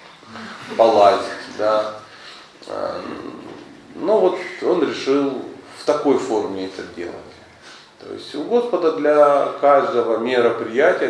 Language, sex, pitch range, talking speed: Russian, male, 115-145 Hz, 95 wpm